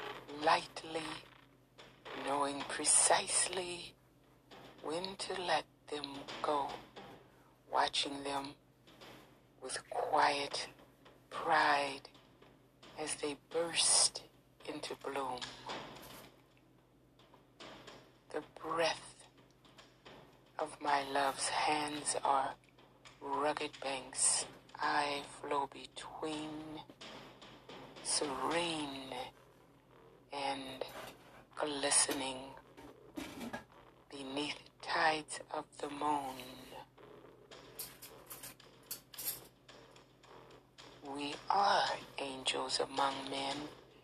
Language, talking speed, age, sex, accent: English, 60 wpm, 60-79, female, American